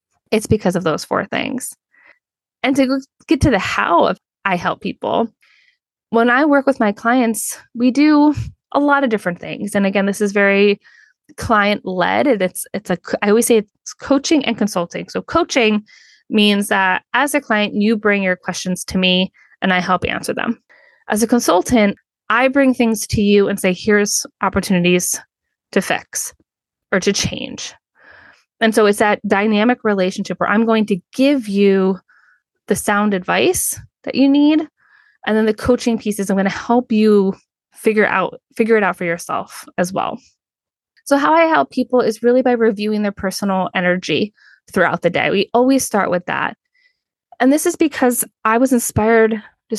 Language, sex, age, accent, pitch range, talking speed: English, female, 20-39, American, 200-260 Hz, 175 wpm